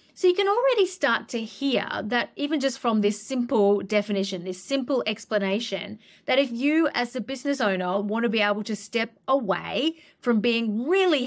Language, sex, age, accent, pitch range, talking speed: English, female, 30-49, Australian, 205-270 Hz, 180 wpm